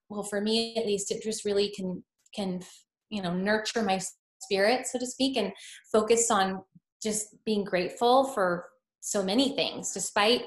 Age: 20-39